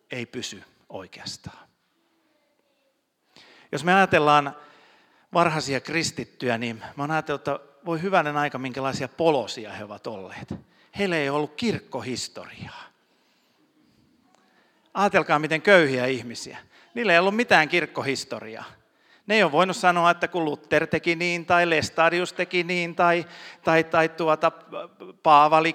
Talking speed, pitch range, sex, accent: 125 wpm, 130-175 Hz, male, native